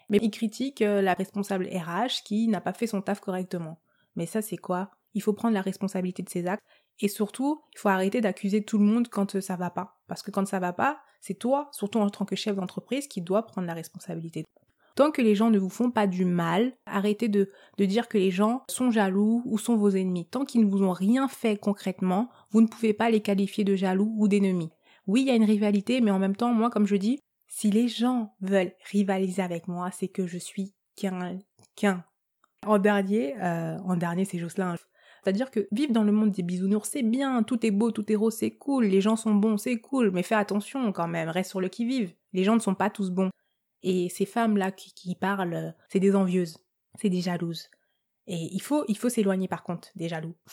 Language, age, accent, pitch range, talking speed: French, 20-39, French, 185-225 Hz, 230 wpm